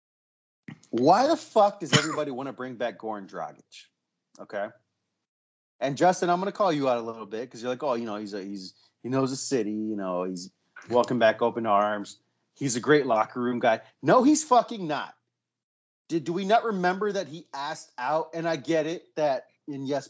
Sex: male